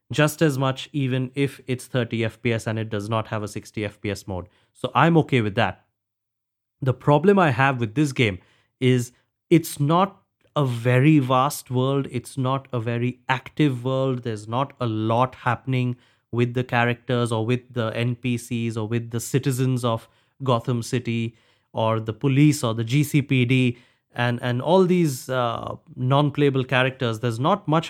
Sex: male